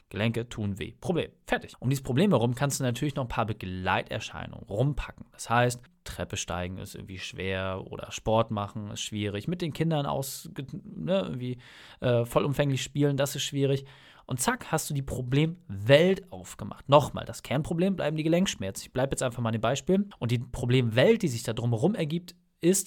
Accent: German